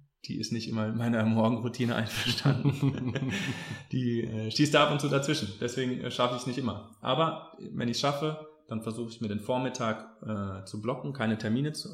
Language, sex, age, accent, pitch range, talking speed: German, male, 20-39, German, 105-125 Hz, 195 wpm